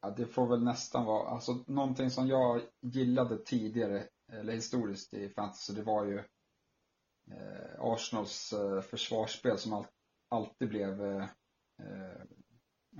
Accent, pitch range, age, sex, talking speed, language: Norwegian, 100-115 Hz, 30-49, male, 125 wpm, Swedish